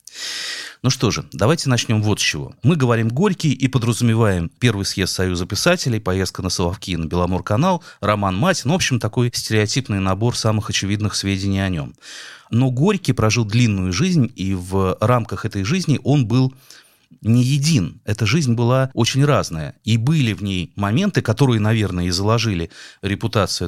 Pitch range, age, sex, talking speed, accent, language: 95-130 Hz, 30-49, male, 165 wpm, native, Russian